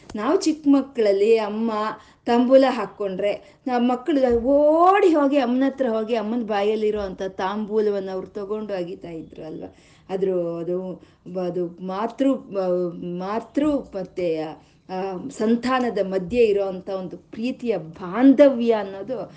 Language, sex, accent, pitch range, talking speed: Kannada, female, native, 195-265 Hz, 110 wpm